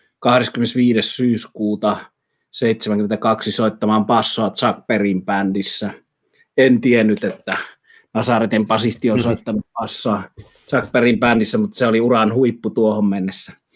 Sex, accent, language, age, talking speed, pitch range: male, native, Finnish, 30-49, 115 wpm, 105-120 Hz